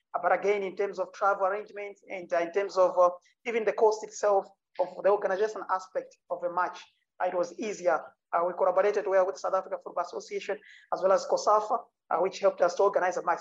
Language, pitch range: English, 180-215 Hz